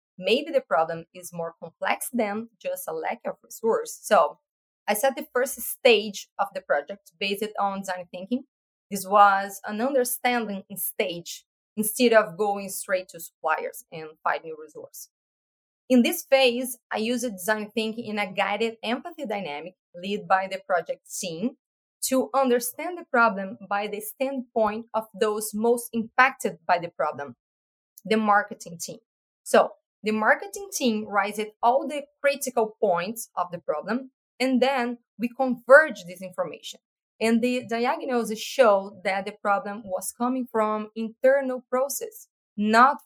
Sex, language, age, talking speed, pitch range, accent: female, English, 20-39, 145 wpm, 200-260 Hz, Brazilian